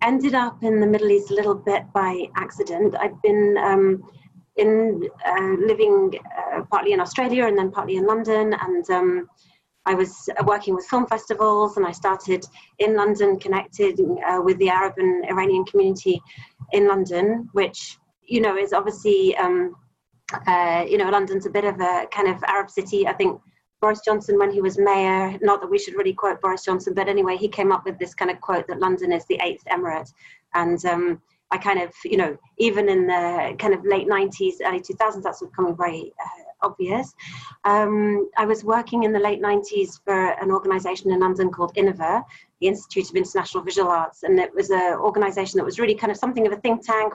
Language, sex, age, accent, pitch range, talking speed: English, female, 30-49, British, 190-235 Hz, 200 wpm